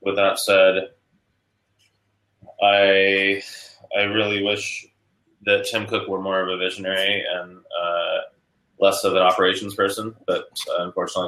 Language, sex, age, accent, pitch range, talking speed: English, male, 20-39, American, 90-105 Hz, 135 wpm